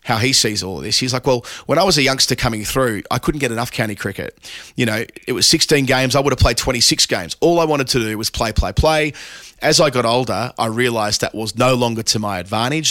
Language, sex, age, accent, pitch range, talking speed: English, male, 30-49, Australian, 105-130 Hz, 260 wpm